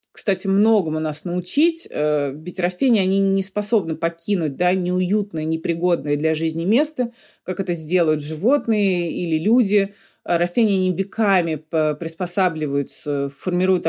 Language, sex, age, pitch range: Russian, female, 30-49, 160-195 Hz